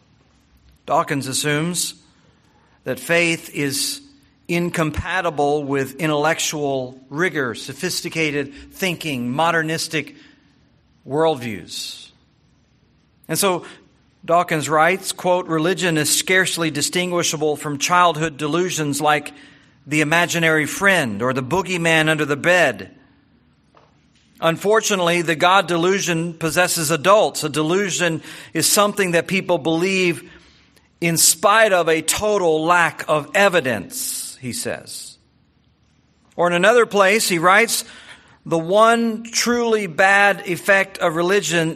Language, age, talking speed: English, 50-69, 100 wpm